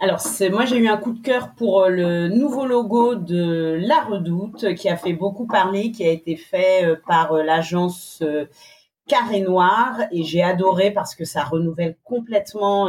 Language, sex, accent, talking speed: French, female, French, 170 wpm